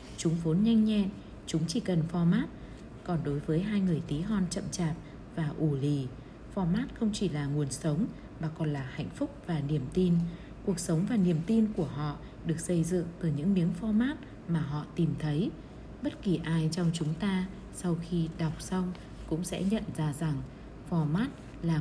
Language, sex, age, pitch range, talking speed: Vietnamese, female, 20-39, 155-190 Hz, 190 wpm